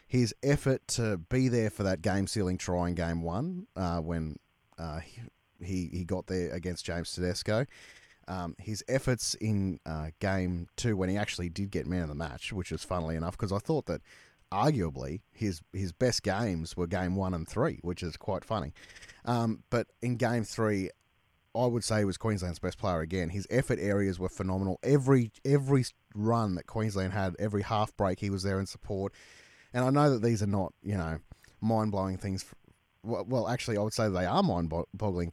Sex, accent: male, Australian